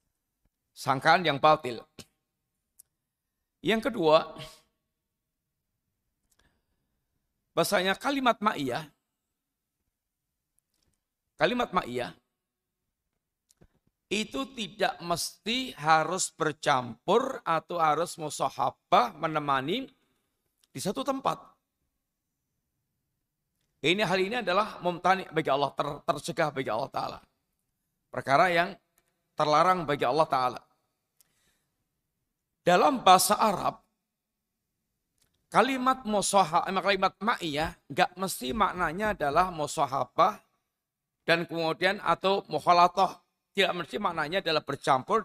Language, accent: Indonesian, native